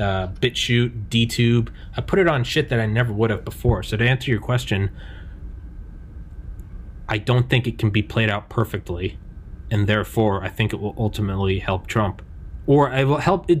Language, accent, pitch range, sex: English, American, 95-130 Hz, male